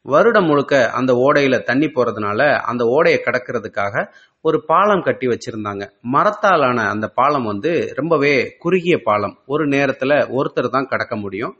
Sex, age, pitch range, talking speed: male, 30-49, 115-150 Hz, 135 wpm